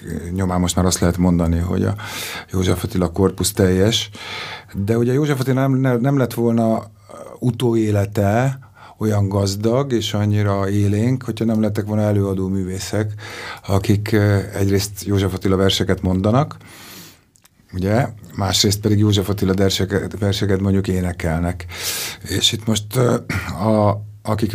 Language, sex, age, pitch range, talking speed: Hungarian, male, 50-69, 95-110 Hz, 125 wpm